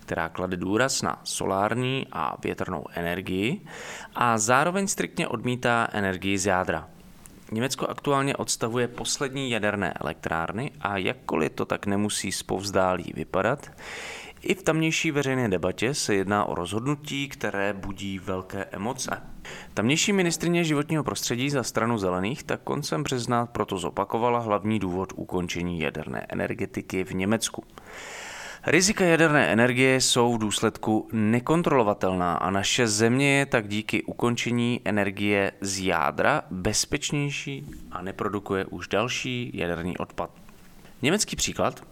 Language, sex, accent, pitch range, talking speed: English, male, Czech, 95-130 Hz, 125 wpm